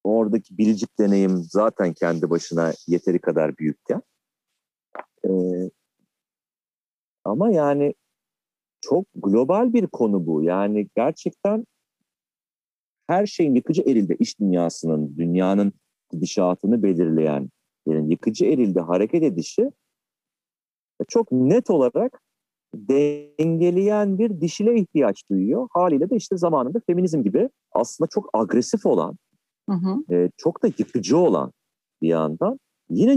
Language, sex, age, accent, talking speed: Turkish, male, 40-59, native, 110 wpm